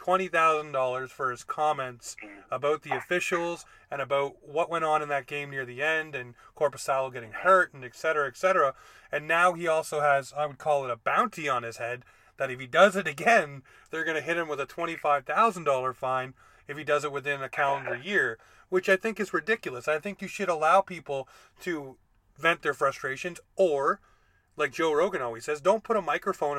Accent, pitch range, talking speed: American, 140-190 Hz, 200 wpm